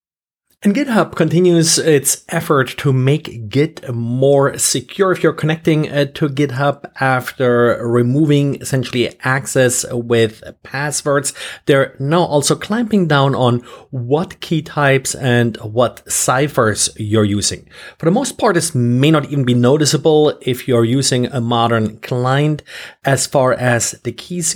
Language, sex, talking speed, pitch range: English, male, 135 wpm, 120-150 Hz